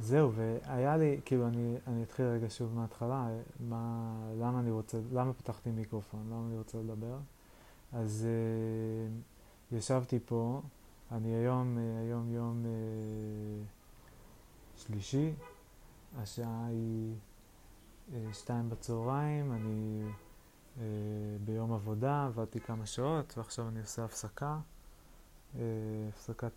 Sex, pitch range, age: male, 110-120 Hz, 20-39